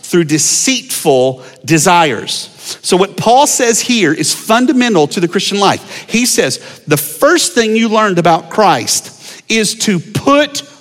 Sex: male